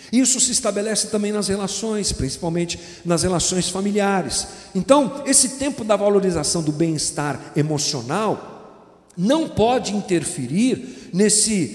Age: 50-69